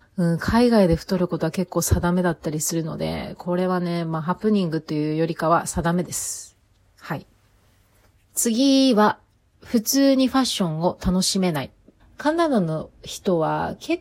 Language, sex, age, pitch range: Japanese, female, 30-49, 160-235 Hz